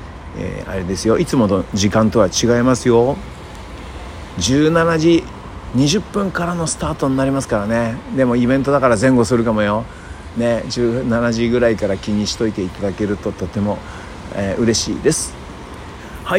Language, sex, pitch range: Japanese, male, 90-130 Hz